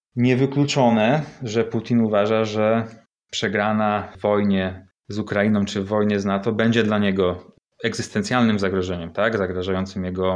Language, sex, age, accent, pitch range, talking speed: Polish, male, 30-49, native, 95-115 Hz, 120 wpm